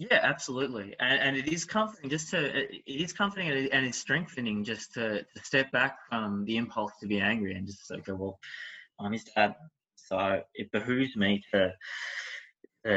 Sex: male